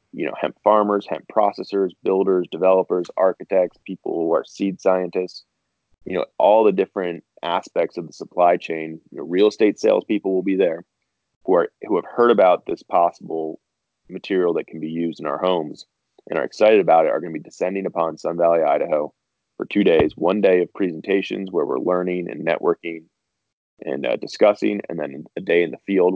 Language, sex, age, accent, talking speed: English, male, 20-39, American, 185 wpm